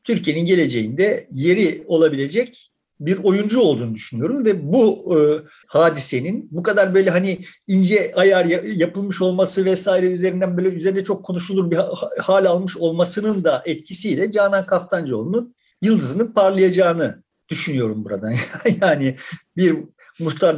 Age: 50-69